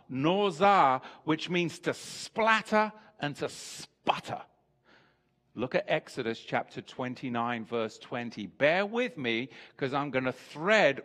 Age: 50-69